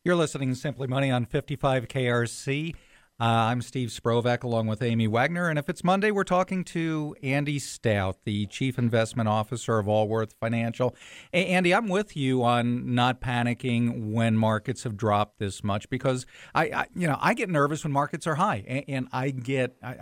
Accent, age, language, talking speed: American, 50-69, English, 185 wpm